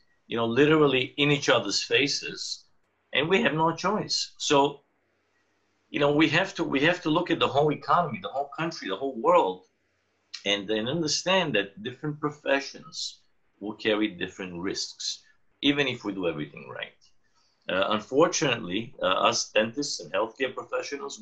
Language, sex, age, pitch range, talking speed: English, male, 50-69, 110-160 Hz, 160 wpm